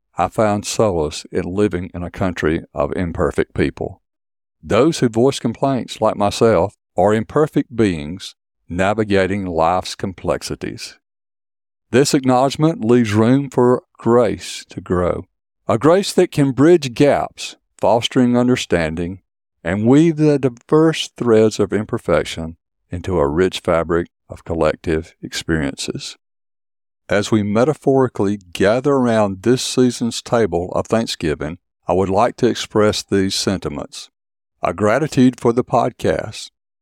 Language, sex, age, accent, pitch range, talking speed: English, male, 50-69, American, 90-125 Hz, 120 wpm